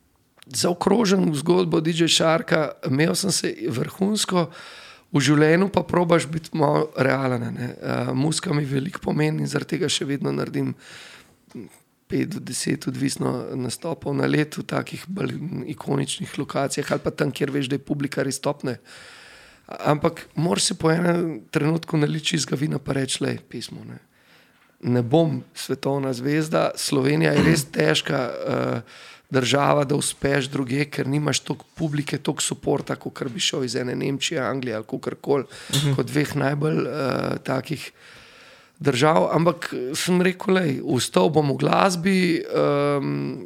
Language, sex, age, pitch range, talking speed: Slovak, male, 40-59, 135-165 Hz, 150 wpm